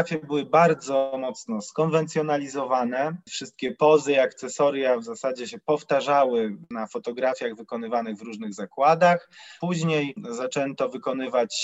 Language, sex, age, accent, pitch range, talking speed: Polish, male, 20-39, native, 125-160 Hz, 110 wpm